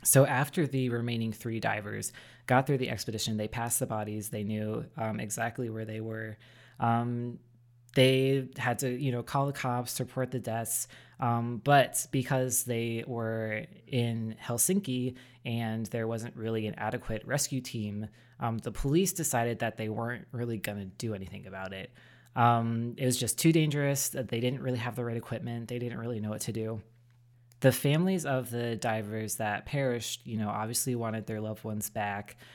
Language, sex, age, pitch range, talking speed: English, female, 20-39, 110-125 Hz, 180 wpm